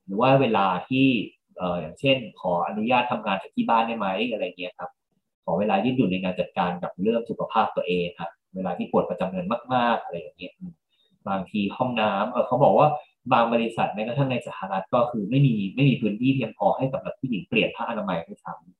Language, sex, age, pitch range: Thai, male, 20-39, 95-140 Hz